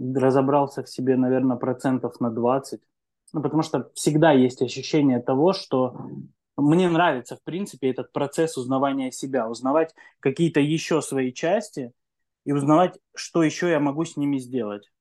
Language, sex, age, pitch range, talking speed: Russian, male, 20-39, 125-150 Hz, 150 wpm